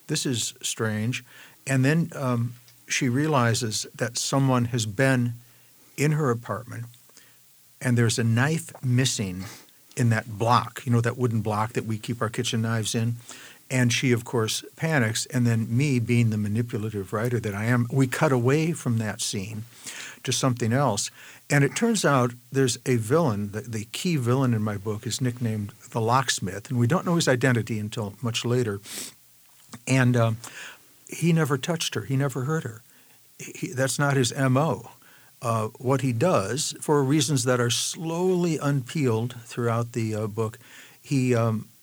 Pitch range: 115-135 Hz